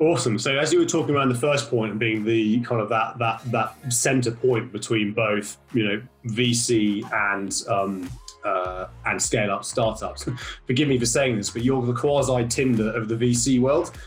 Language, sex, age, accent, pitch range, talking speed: English, male, 30-49, British, 115-130 Hz, 190 wpm